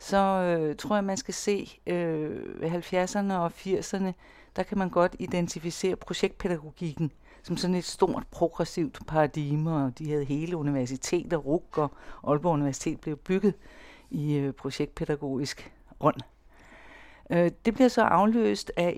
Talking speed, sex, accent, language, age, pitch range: 145 wpm, female, native, Danish, 60-79, 150-195 Hz